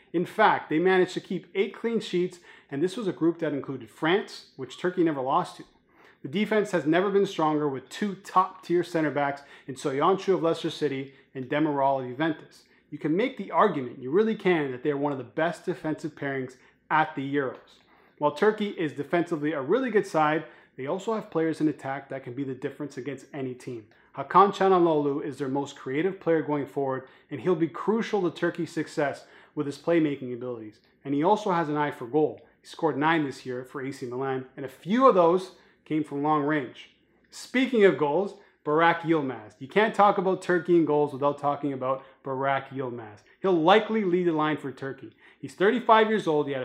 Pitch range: 140-180 Hz